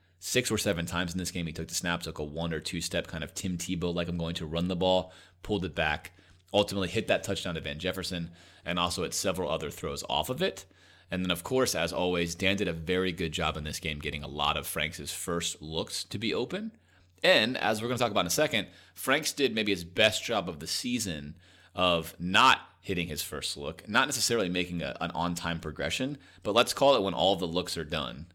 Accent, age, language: American, 30-49, English